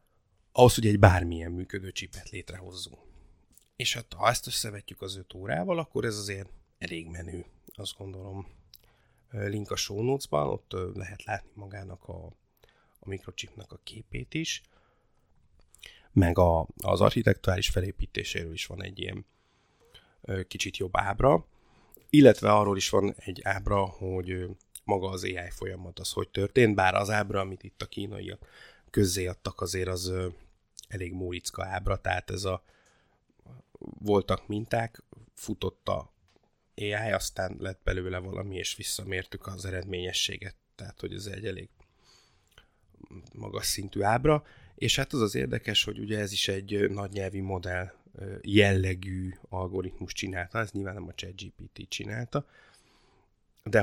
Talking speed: 135 wpm